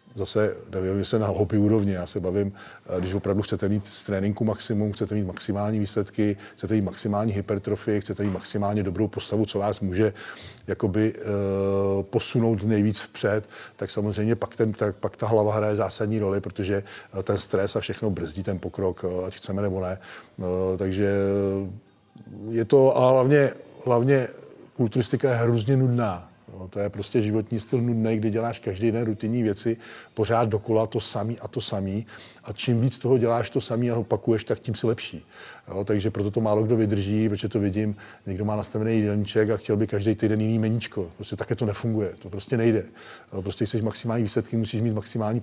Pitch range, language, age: 100-115 Hz, Czech, 40-59